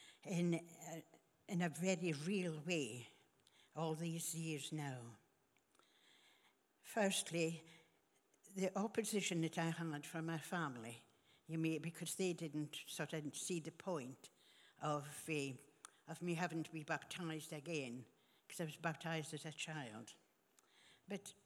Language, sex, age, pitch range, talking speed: English, female, 60-79, 150-180 Hz, 125 wpm